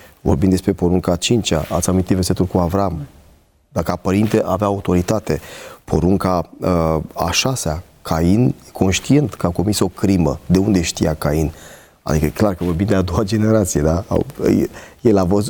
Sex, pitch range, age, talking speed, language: male, 90-120 Hz, 30-49, 160 wpm, Romanian